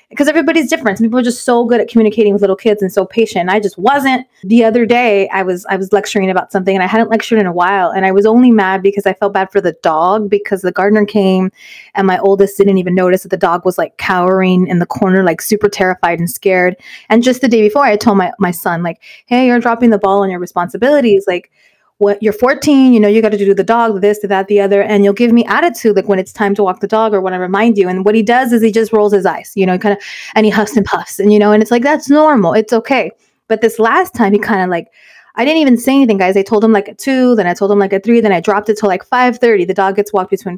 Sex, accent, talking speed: female, American, 290 wpm